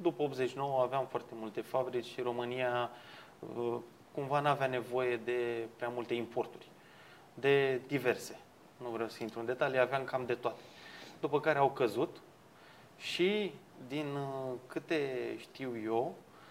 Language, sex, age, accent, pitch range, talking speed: Romanian, male, 20-39, native, 125-160 Hz, 135 wpm